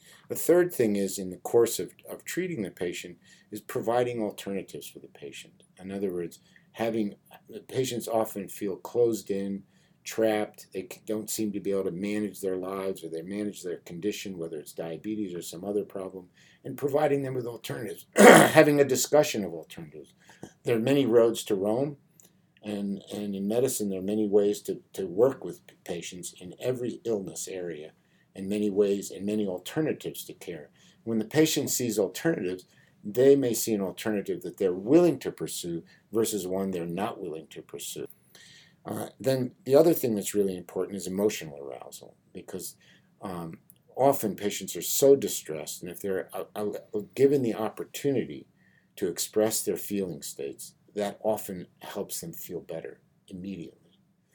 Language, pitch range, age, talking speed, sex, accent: English, 95-120 Hz, 50-69, 165 wpm, male, American